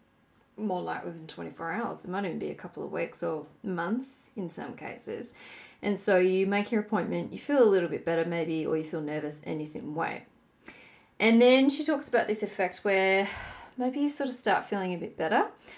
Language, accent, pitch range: English, Australian, 180-230 Hz